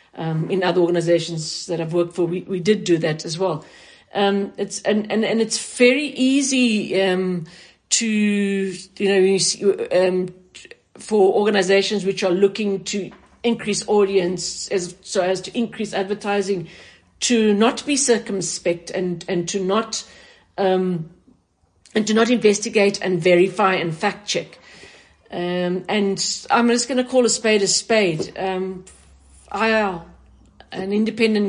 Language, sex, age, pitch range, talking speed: English, female, 50-69, 180-215 Hz, 150 wpm